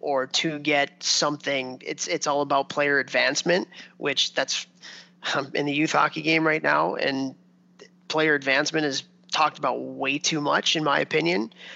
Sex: male